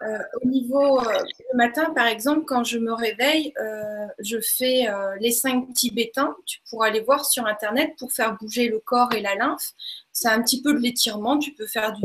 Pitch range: 220-275 Hz